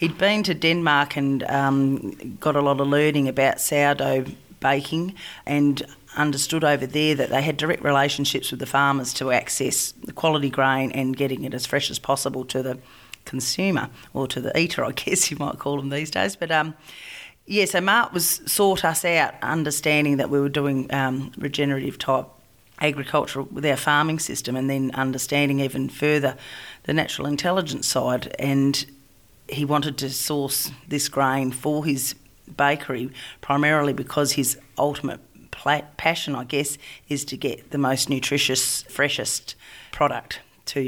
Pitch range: 135-150 Hz